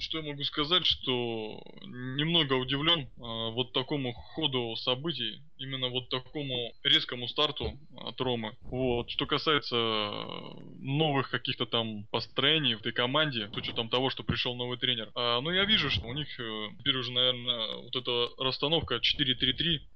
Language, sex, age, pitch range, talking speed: Russian, male, 20-39, 120-140 Hz, 150 wpm